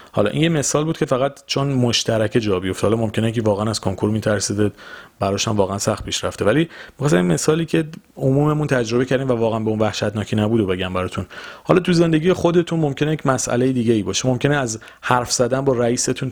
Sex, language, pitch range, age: male, Persian, 105-135 Hz, 30-49